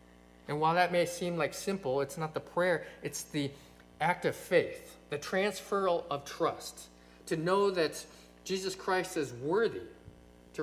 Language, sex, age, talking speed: English, male, 40-59, 160 wpm